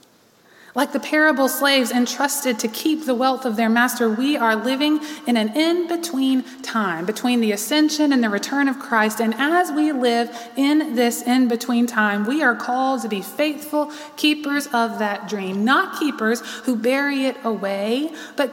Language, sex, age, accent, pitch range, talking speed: English, female, 20-39, American, 230-280 Hz, 170 wpm